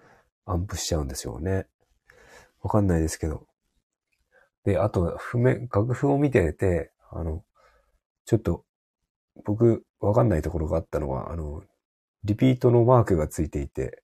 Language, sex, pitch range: Japanese, male, 80-110 Hz